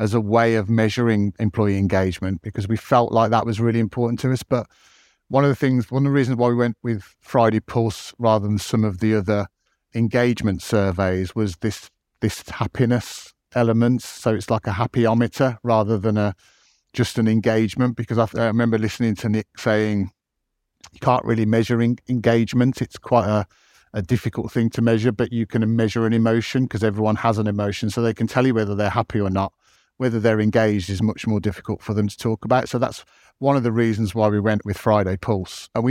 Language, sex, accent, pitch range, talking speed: English, male, British, 105-120 Hz, 210 wpm